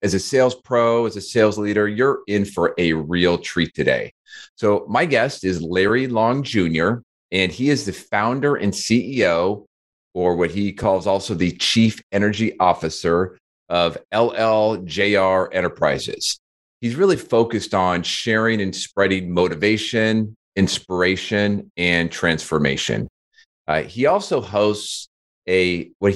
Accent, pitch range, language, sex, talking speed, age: American, 90-115 Hz, English, male, 135 wpm, 40-59